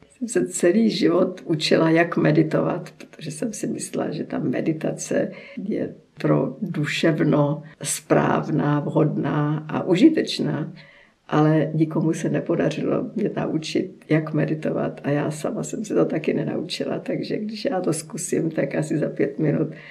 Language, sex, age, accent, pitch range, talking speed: Czech, female, 50-69, native, 150-165 Hz, 140 wpm